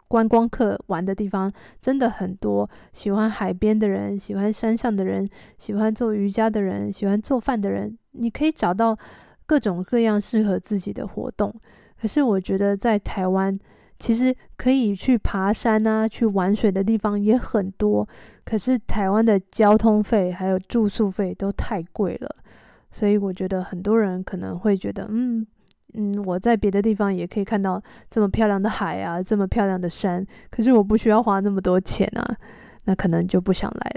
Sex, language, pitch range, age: female, Chinese, 200-230 Hz, 20-39